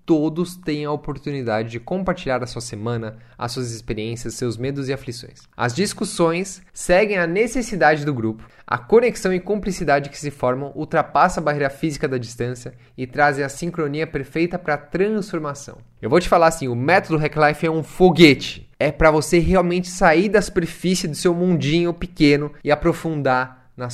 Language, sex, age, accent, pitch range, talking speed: Portuguese, male, 20-39, Brazilian, 120-170 Hz, 175 wpm